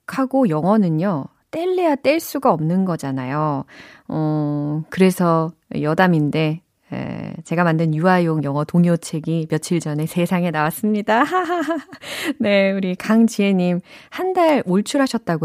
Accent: native